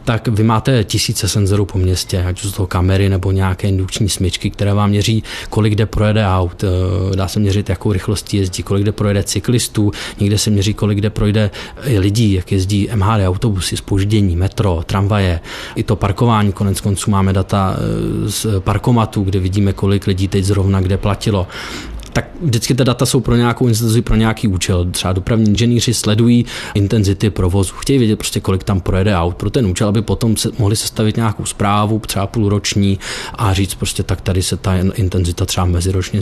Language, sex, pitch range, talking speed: Czech, male, 95-115 Hz, 185 wpm